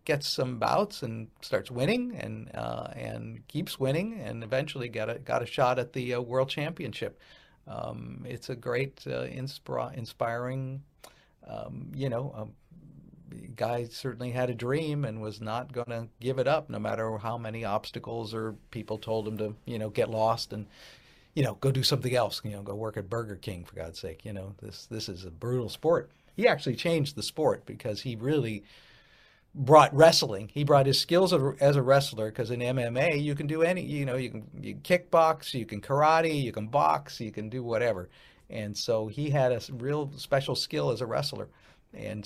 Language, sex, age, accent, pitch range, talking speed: English, male, 50-69, American, 110-150 Hz, 195 wpm